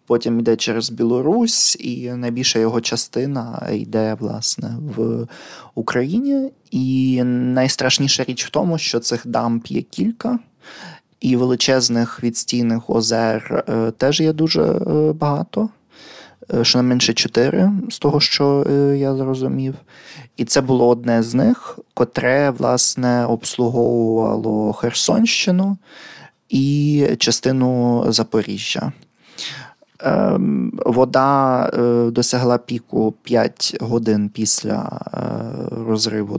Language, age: Ukrainian, 20-39